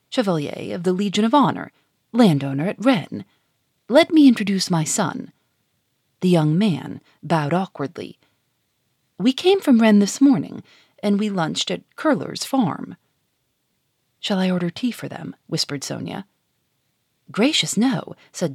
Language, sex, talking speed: English, female, 135 wpm